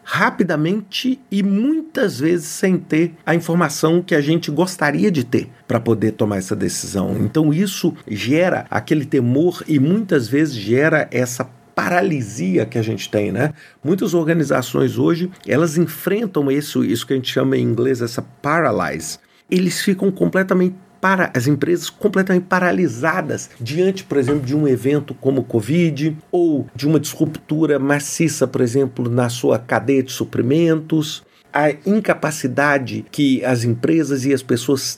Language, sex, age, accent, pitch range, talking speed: Portuguese, male, 50-69, Brazilian, 135-180 Hz, 150 wpm